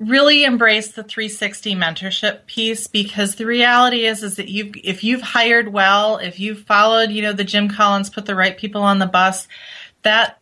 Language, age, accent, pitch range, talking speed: English, 30-49, American, 195-230 Hz, 190 wpm